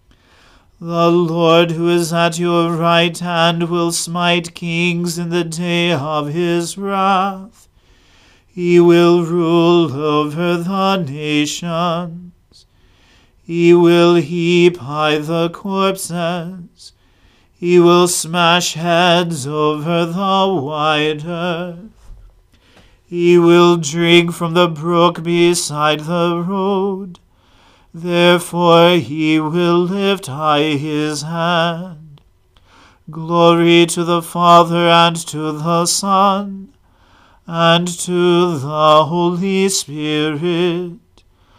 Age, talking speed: 40-59, 95 wpm